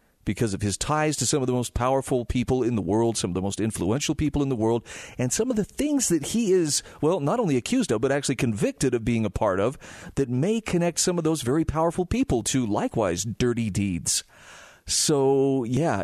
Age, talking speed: 40-59, 220 wpm